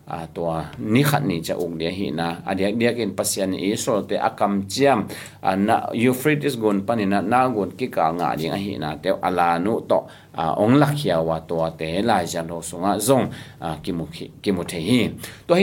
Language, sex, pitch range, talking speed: Italian, male, 100-145 Hz, 110 wpm